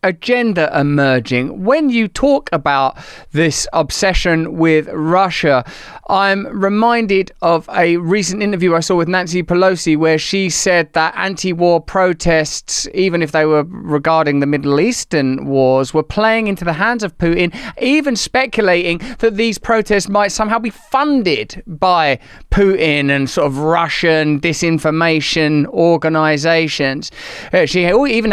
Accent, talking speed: British, 130 wpm